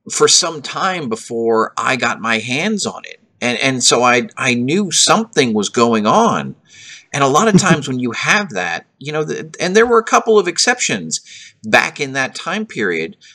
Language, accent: English, American